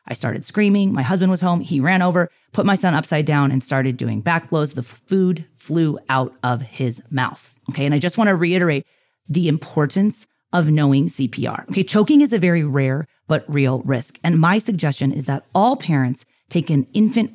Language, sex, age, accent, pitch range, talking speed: English, female, 30-49, American, 135-180 Hz, 200 wpm